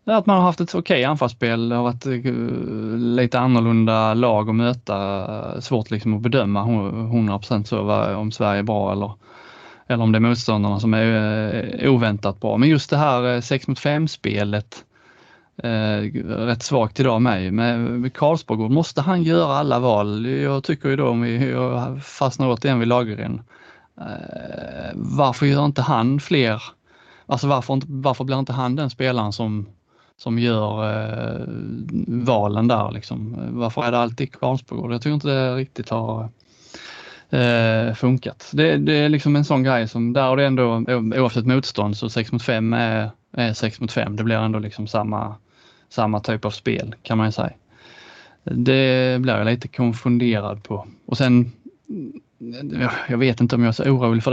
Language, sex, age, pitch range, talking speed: Swedish, male, 20-39, 110-130 Hz, 165 wpm